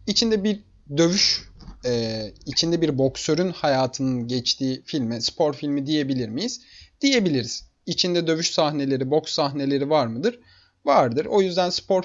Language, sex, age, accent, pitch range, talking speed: Turkish, male, 30-49, native, 120-175 Hz, 125 wpm